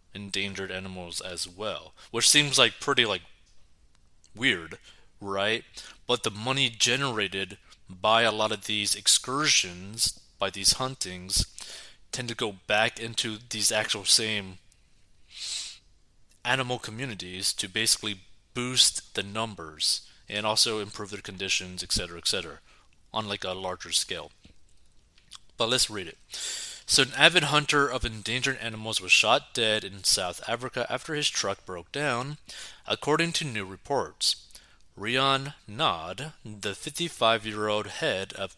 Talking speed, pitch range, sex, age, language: 130 wpm, 95-125 Hz, male, 20-39, English